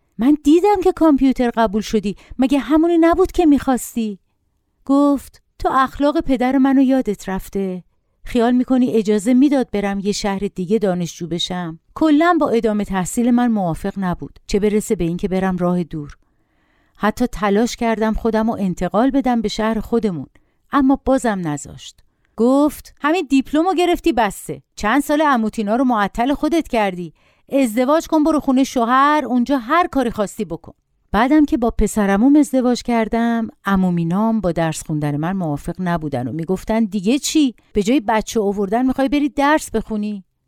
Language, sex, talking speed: Persian, female, 150 wpm